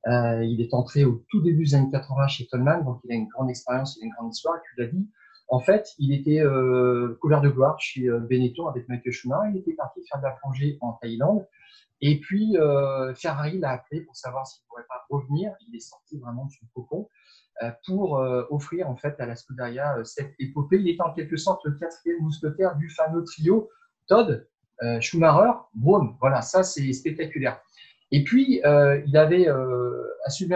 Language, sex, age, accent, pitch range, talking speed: French, male, 30-49, French, 130-170 Hz, 210 wpm